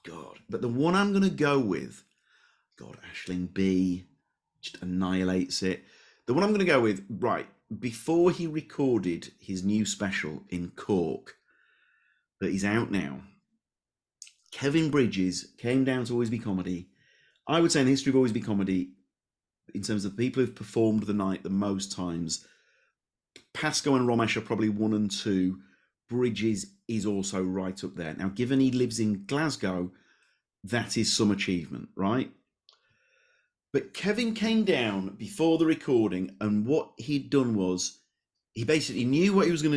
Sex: male